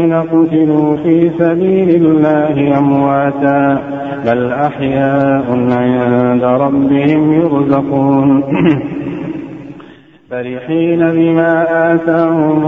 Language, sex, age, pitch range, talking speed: Arabic, male, 50-69, 140-165 Hz, 60 wpm